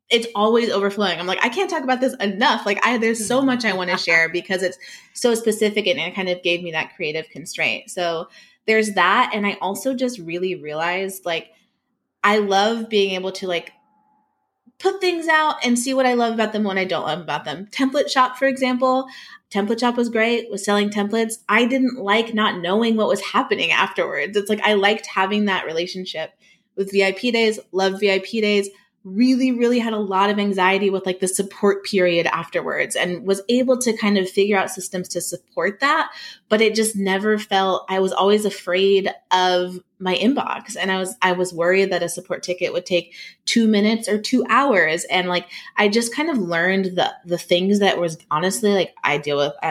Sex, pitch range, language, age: female, 185-225 Hz, English, 20-39